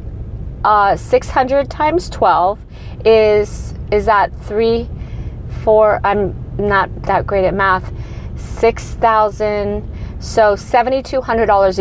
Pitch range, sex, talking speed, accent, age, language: 220-290 Hz, female, 90 wpm, American, 40-59, English